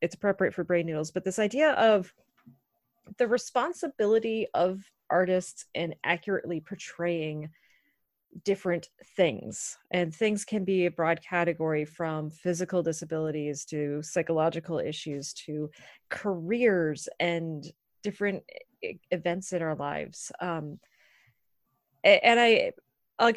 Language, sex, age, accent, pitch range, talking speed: English, female, 30-49, American, 170-215 Hz, 110 wpm